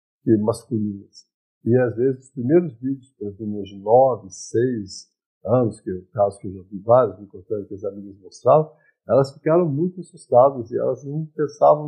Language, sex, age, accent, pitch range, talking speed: Portuguese, male, 50-69, Brazilian, 115-155 Hz, 180 wpm